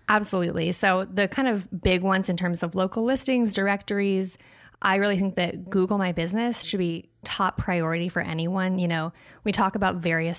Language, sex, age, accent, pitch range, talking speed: English, female, 20-39, American, 170-205 Hz, 185 wpm